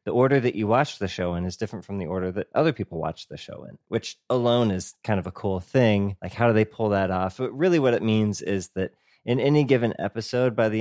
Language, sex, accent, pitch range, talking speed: English, male, American, 95-115 Hz, 265 wpm